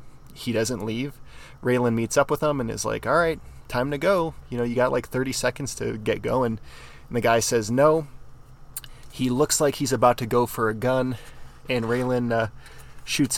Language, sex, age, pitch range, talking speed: English, male, 20-39, 115-135 Hz, 200 wpm